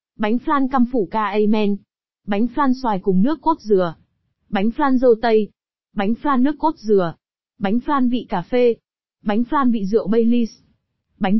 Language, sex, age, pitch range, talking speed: Vietnamese, female, 20-39, 210-260 Hz, 175 wpm